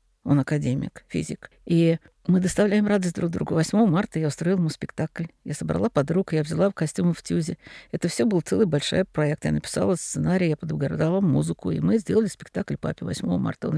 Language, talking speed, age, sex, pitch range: Russian, 190 wpm, 50-69, female, 150-185 Hz